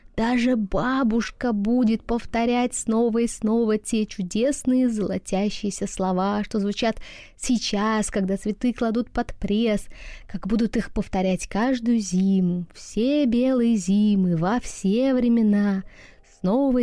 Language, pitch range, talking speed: Russian, 195-235 Hz, 115 wpm